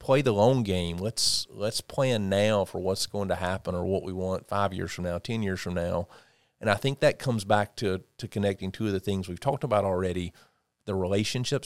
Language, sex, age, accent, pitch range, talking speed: English, male, 40-59, American, 95-110 Hz, 225 wpm